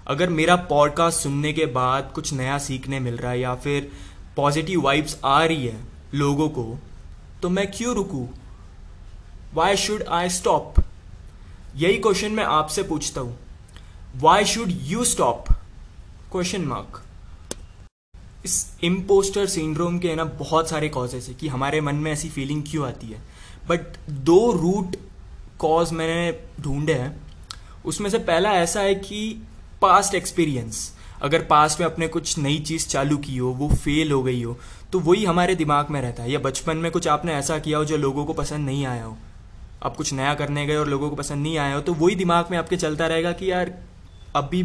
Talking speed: 180 wpm